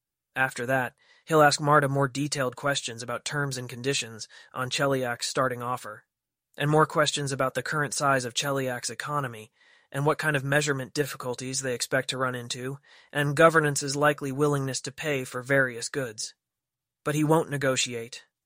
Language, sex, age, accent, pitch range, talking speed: English, male, 20-39, American, 125-145 Hz, 165 wpm